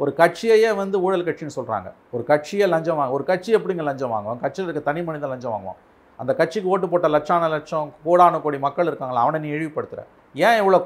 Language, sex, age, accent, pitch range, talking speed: Tamil, male, 50-69, native, 140-180 Hz, 200 wpm